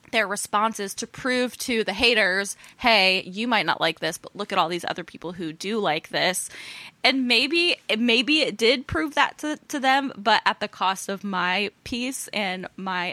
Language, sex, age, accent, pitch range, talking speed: English, female, 10-29, American, 185-235 Hz, 195 wpm